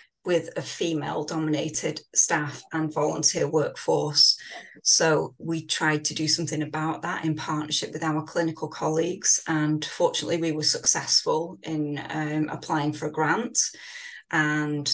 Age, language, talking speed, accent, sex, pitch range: 30-49, English, 135 wpm, British, female, 150-170 Hz